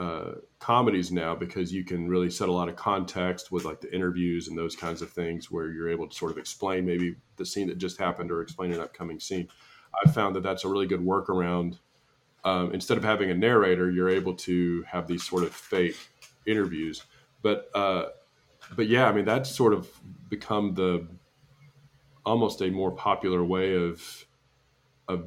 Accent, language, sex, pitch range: American, English, male, 90-115 Hz